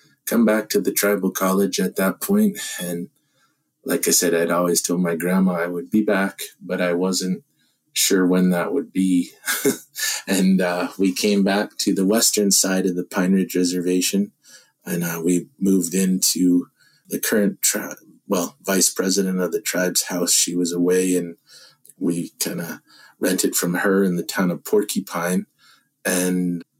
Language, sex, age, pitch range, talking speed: English, male, 30-49, 90-95 Hz, 170 wpm